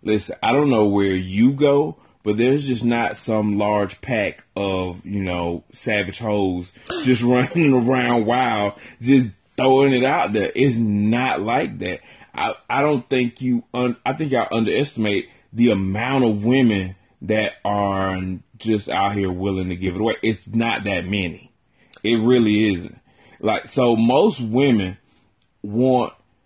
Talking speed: 155 wpm